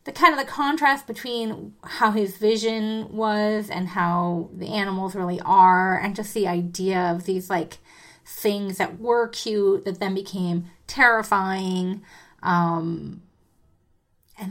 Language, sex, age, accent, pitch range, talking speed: English, female, 30-49, American, 185-225 Hz, 135 wpm